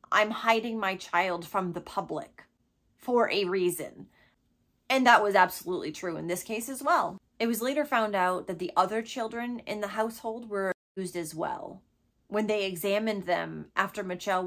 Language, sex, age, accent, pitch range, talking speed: English, female, 30-49, American, 190-240 Hz, 175 wpm